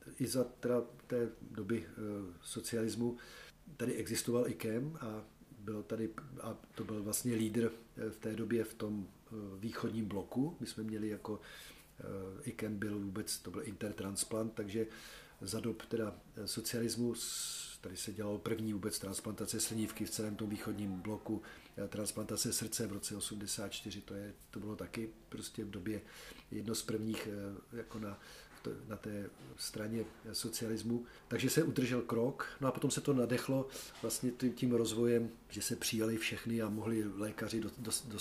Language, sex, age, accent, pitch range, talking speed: Czech, male, 40-59, native, 105-115 Hz, 155 wpm